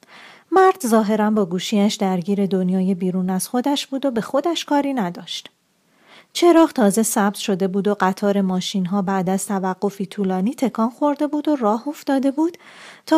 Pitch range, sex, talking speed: 185-265 Hz, female, 160 wpm